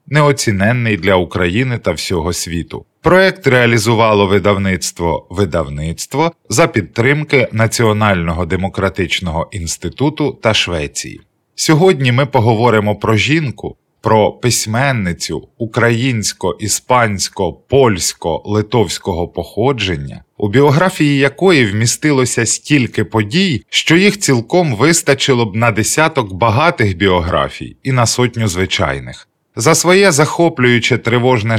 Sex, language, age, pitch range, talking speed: male, Ukrainian, 20-39, 100-140 Hz, 95 wpm